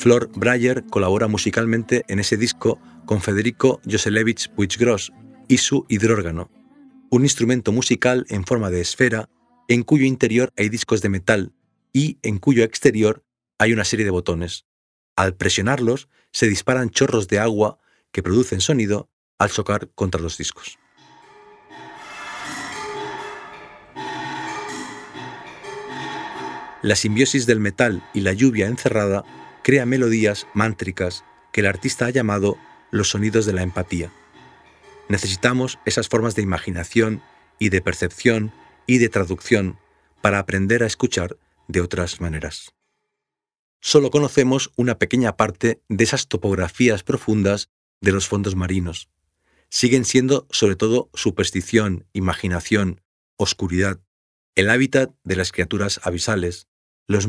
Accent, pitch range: Spanish, 95-125 Hz